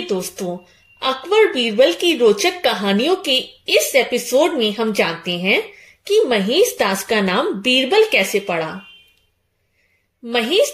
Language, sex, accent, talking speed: Hindi, female, native, 115 wpm